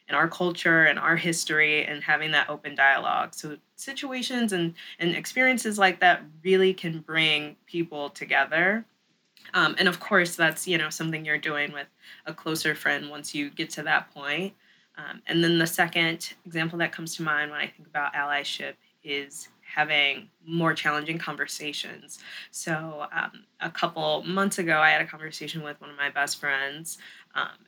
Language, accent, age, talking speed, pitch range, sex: English, American, 20-39, 175 wpm, 150-175 Hz, female